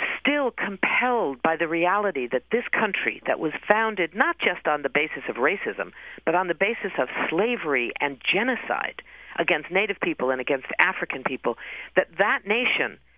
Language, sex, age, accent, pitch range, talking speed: English, female, 50-69, American, 160-250 Hz, 165 wpm